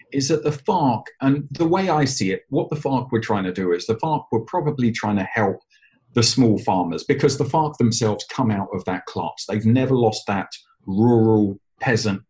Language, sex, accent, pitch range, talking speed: English, male, British, 110-145 Hz, 210 wpm